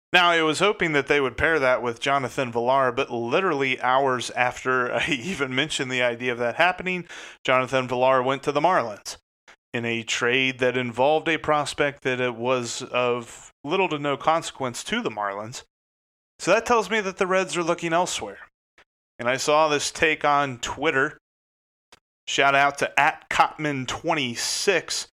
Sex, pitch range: male, 125-155 Hz